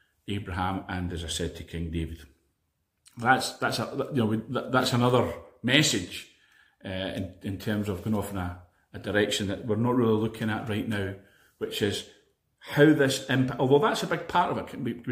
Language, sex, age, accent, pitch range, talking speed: English, male, 40-59, British, 105-145 Hz, 190 wpm